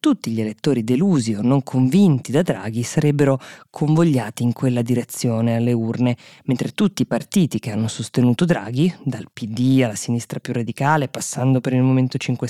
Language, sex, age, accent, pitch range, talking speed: Italian, female, 20-39, native, 125-165 Hz, 170 wpm